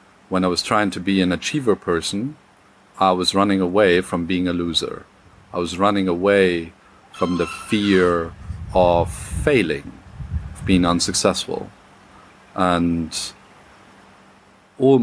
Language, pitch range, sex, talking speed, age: German, 85-100 Hz, male, 125 wpm, 40-59